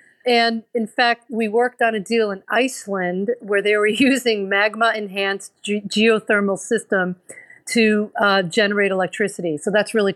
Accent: American